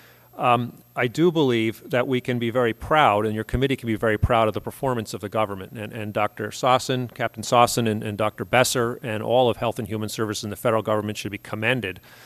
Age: 40-59